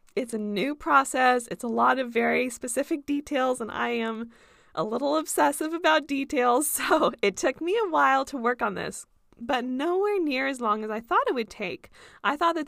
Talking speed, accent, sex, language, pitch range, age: 205 wpm, American, female, English, 230-310 Hz, 20-39